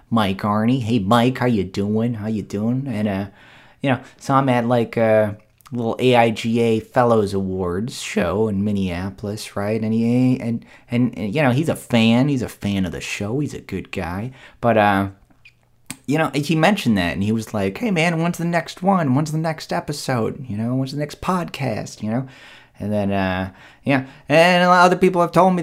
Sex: male